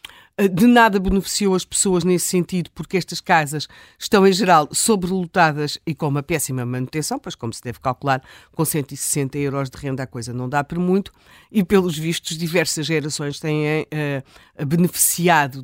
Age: 50-69